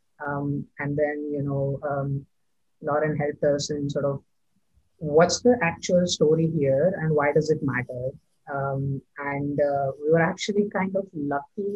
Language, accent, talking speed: English, Indian, 160 wpm